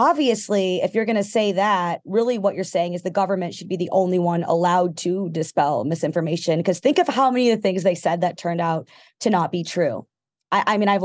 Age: 20-39